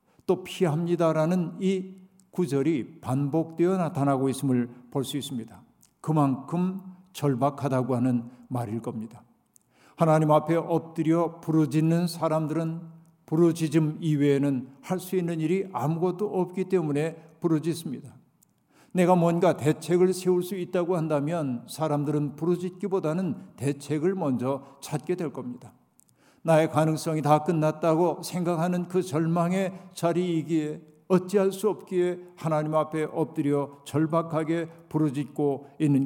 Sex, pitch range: male, 145-175 Hz